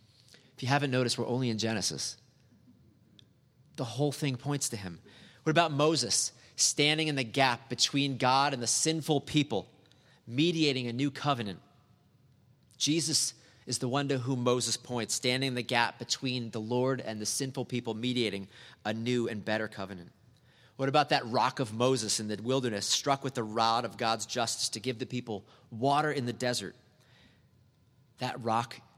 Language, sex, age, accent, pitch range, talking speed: English, male, 30-49, American, 115-135 Hz, 170 wpm